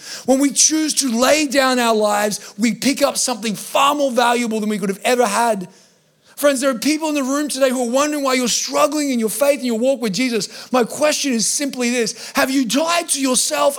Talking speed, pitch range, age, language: 230 wpm, 170-260 Hz, 30-49, English